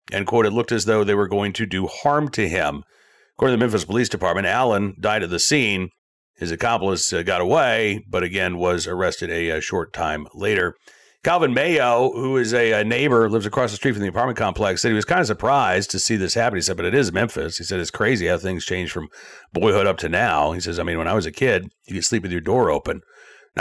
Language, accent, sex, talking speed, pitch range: English, American, male, 250 wpm, 95-135 Hz